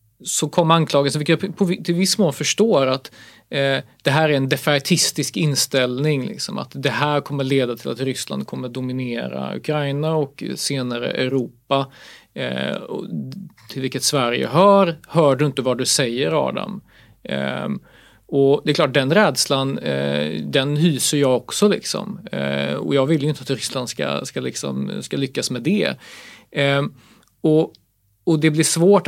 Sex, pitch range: male, 125-155 Hz